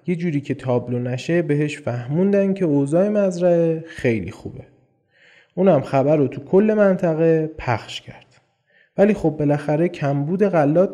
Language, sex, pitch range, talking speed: Persian, male, 125-175 Hz, 135 wpm